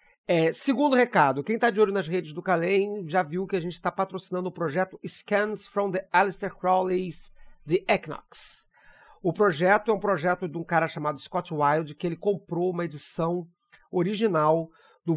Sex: male